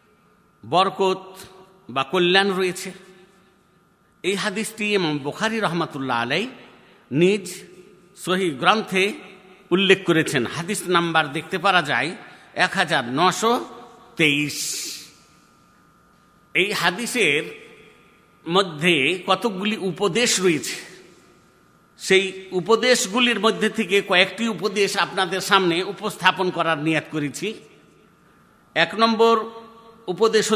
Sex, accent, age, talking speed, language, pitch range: male, native, 50-69, 60 wpm, Bengali, 170-215 Hz